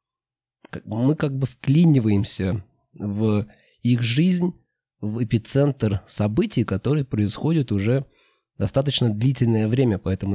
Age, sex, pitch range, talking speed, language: 20-39, male, 105-135 Hz, 100 wpm, Russian